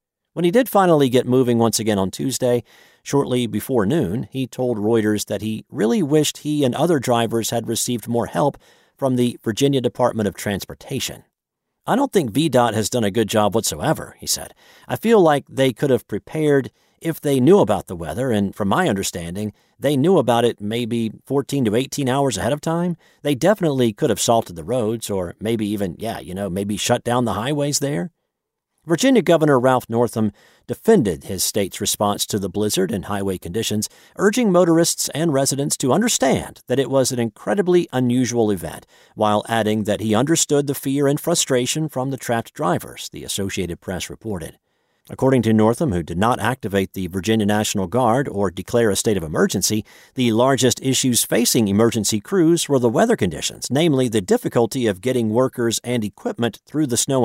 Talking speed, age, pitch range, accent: 185 wpm, 40-59, 105-140 Hz, American